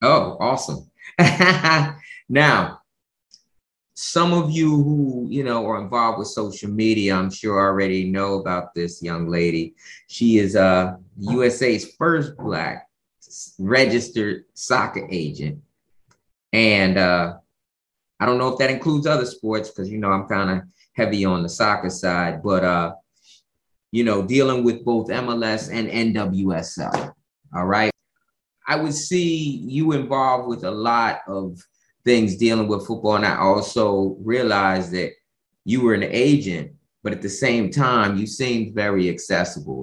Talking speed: 145 wpm